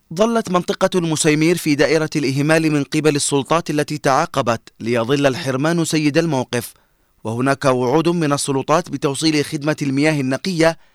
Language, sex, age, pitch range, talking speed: Arabic, male, 30-49, 135-160 Hz, 125 wpm